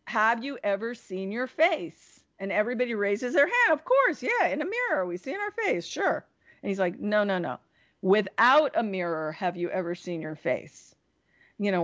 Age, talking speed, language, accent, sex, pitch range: 50-69, 205 wpm, English, American, female, 190-255 Hz